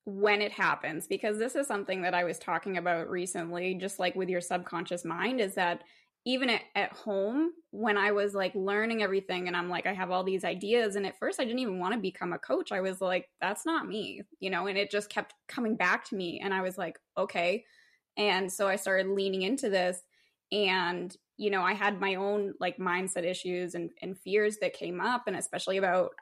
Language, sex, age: English, female, 10-29